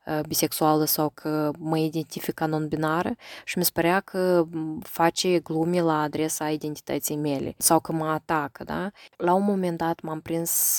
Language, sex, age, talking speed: Romanian, female, 20-39, 160 wpm